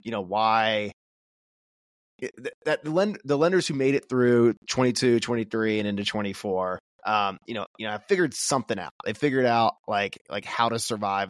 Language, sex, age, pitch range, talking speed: English, male, 20-39, 100-120 Hz, 200 wpm